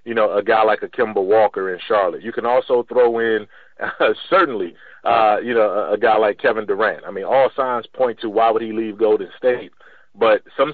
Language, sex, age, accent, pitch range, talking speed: English, male, 30-49, American, 125-175 Hz, 225 wpm